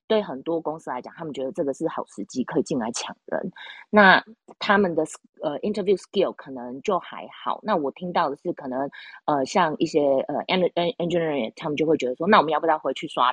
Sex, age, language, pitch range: female, 30-49, Chinese, 135-185 Hz